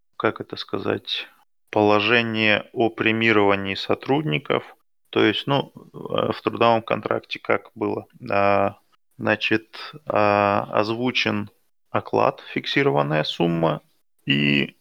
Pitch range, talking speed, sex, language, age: 100-110 Hz, 95 wpm, male, Russian, 20-39